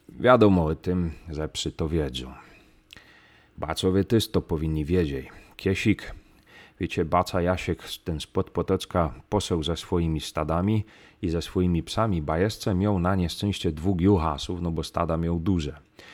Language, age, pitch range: Polish, 30-49, 80-100 Hz